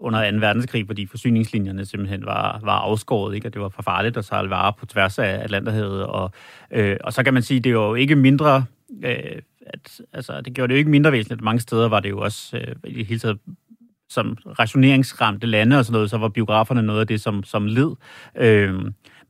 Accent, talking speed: native, 215 wpm